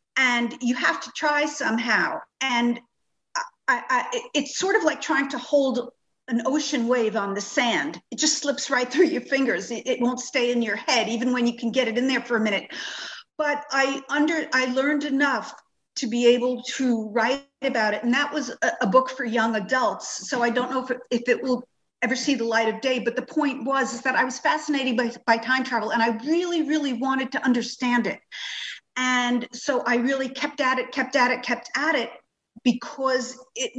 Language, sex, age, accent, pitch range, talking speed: English, female, 50-69, American, 240-270 Hz, 210 wpm